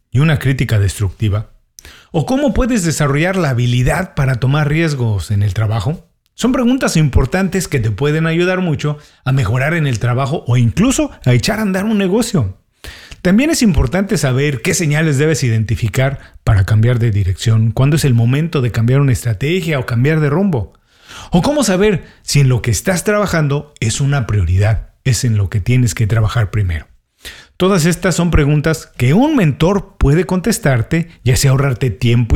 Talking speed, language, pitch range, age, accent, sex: 175 wpm, Spanish, 115-175 Hz, 40-59, Mexican, male